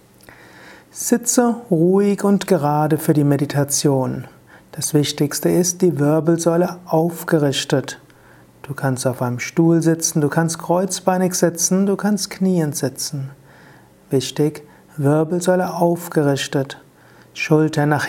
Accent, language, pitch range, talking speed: German, German, 140-170 Hz, 105 wpm